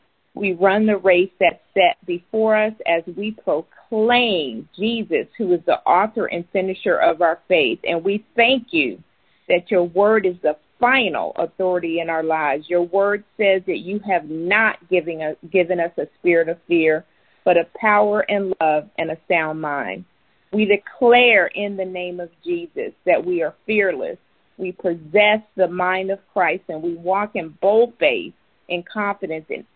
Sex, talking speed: female, 165 wpm